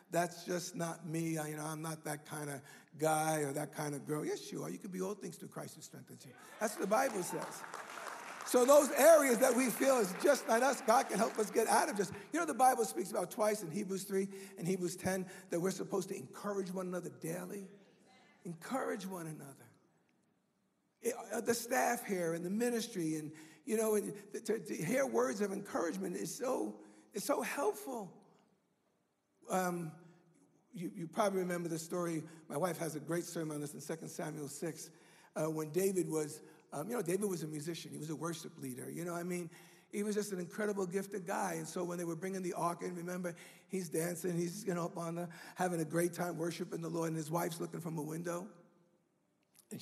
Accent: American